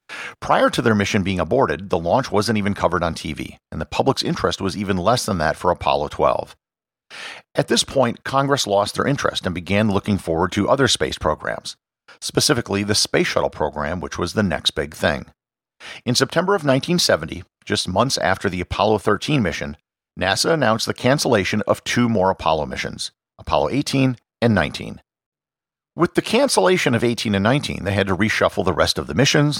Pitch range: 95-125 Hz